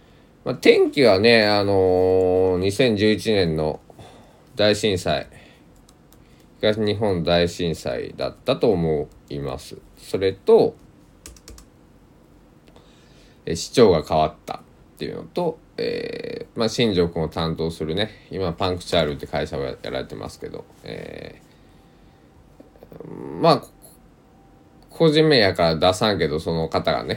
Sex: male